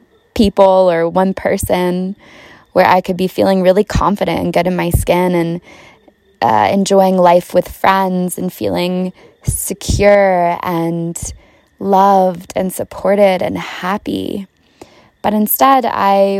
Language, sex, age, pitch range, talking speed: English, female, 20-39, 165-190 Hz, 125 wpm